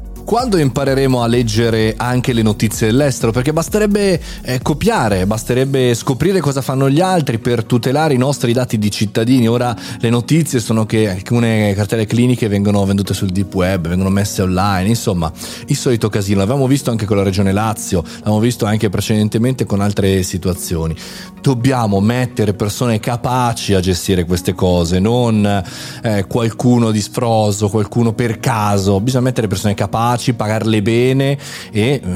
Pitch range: 105-125 Hz